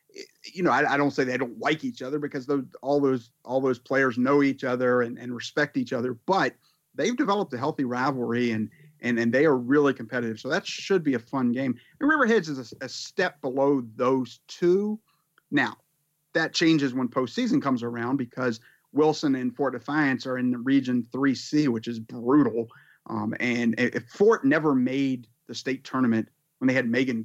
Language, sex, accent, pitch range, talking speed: English, male, American, 120-145 Hz, 195 wpm